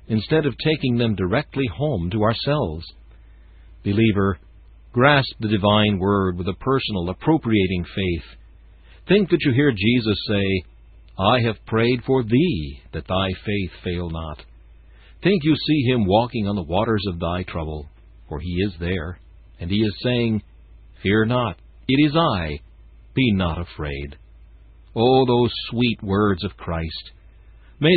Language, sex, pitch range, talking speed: English, male, 85-120 Hz, 145 wpm